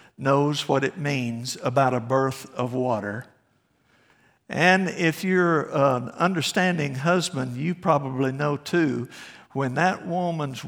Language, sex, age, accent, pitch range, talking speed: English, male, 60-79, American, 145-190 Hz, 125 wpm